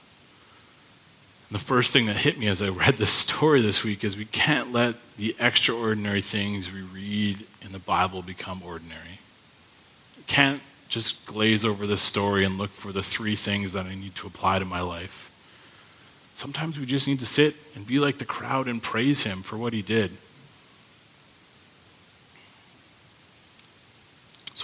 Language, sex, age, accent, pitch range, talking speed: English, male, 30-49, American, 95-120 Hz, 160 wpm